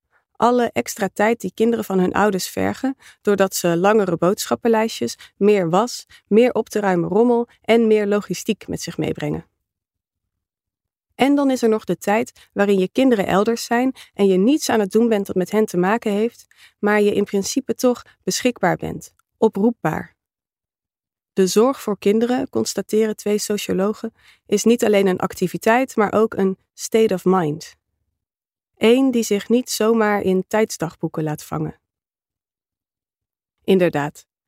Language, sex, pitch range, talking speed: Dutch, female, 180-220 Hz, 150 wpm